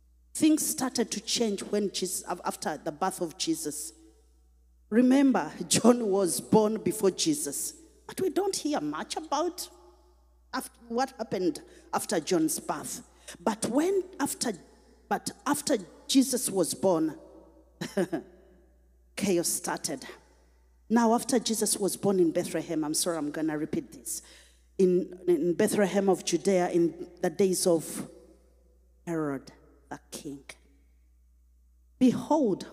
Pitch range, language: 150-230 Hz, English